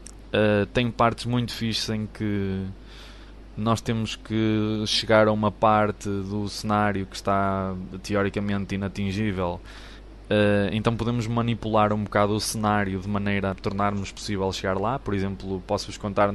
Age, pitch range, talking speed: 20-39, 95-110 Hz, 135 wpm